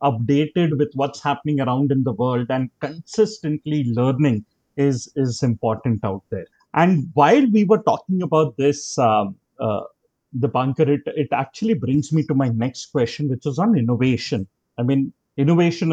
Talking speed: 160 wpm